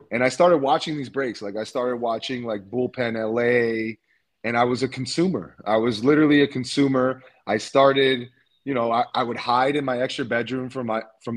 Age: 30-49